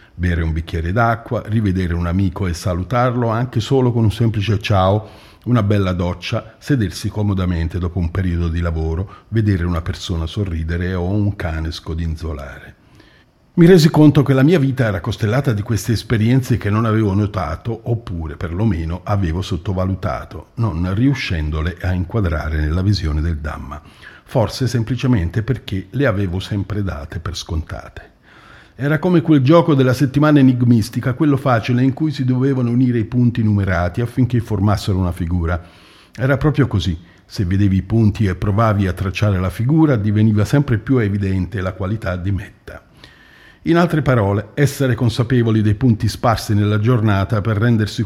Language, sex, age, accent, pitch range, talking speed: Italian, male, 50-69, native, 90-120 Hz, 155 wpm